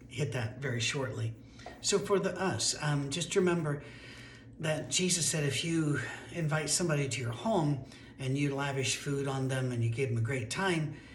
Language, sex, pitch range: English, male, 125-150 Hz